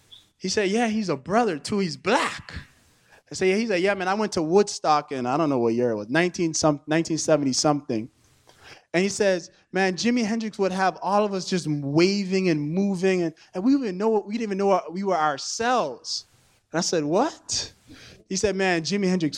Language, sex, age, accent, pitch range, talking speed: English, male, 20-39, American, 150-220 Hz, 200 wpm